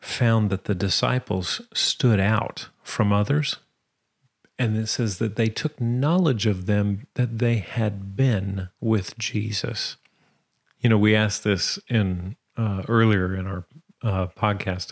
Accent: American